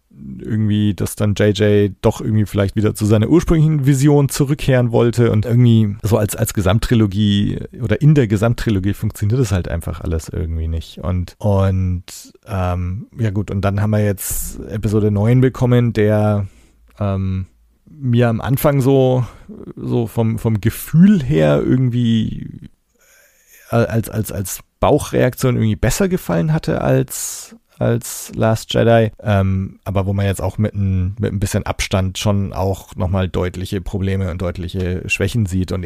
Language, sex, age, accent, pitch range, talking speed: German, male, 40-59, German, 95-120 Hz, 150 wpm